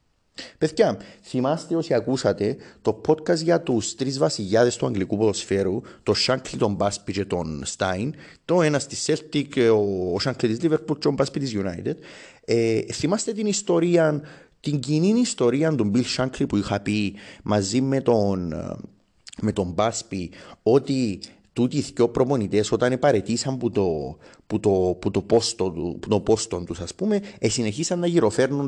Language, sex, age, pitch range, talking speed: Greek, male, 30-49, 100-150 Hz, 145 wpm